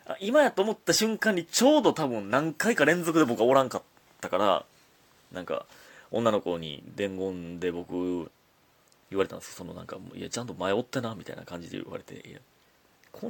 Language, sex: Japanese, male